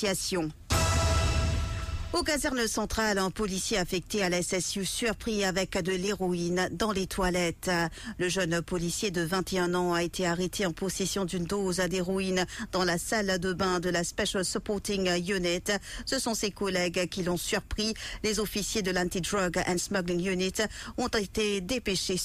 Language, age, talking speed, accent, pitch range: English, 50-69, 155 wpm, French, 180-205 Hz